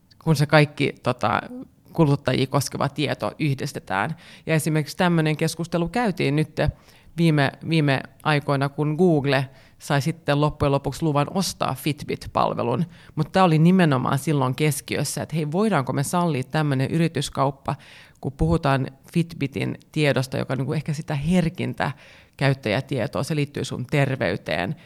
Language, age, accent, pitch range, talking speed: Finnish, 30-49, native, 135-160 Hz, 125 wpm